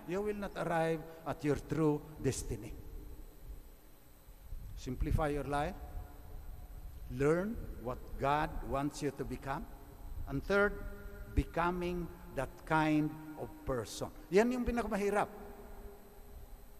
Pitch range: 135-180 Hz